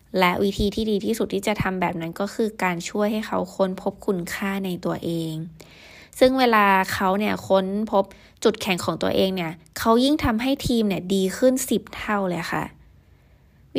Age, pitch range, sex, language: 20-39, 180-220 Hz, female, Thai